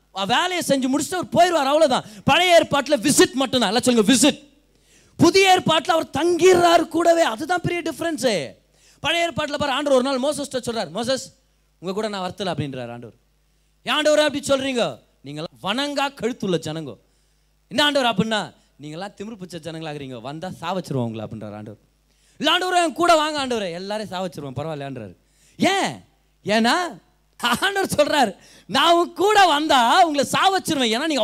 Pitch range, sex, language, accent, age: 195-310 Hz, male, Tamil, native, 20-39